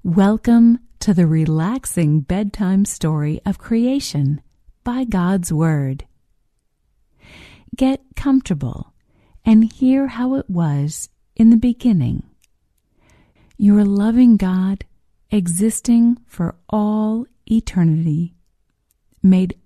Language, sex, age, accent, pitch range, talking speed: English, female, 50-69, American, 165-235 Hz, 90 wpm